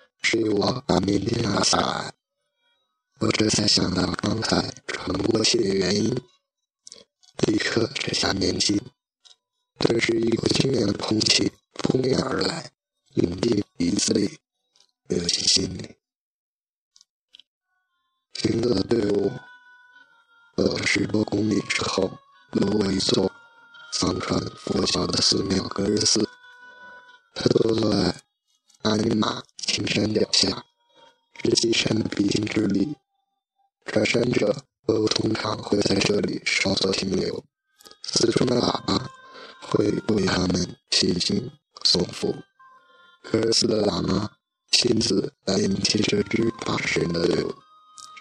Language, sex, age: Chinese, male, 40-59